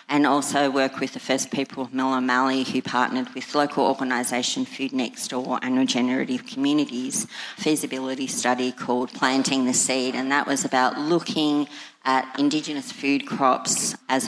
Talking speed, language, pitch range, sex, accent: 155 wpm, English, 130-150 Hz, female, Australian